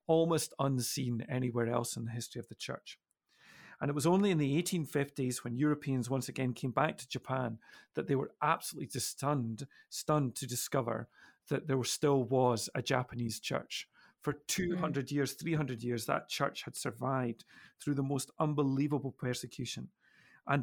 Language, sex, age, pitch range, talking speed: English, male, 40-59, 125-150 Hz, 165 wpm